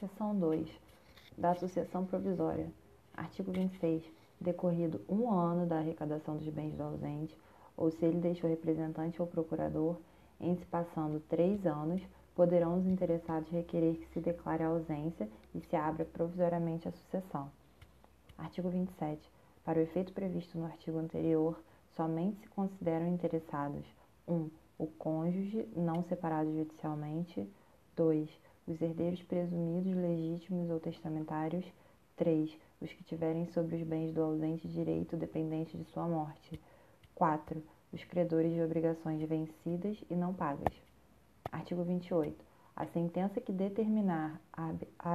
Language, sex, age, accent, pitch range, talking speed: Portuguese, female, 20-39, Brazilian, 160-175 Hz, 130 wpm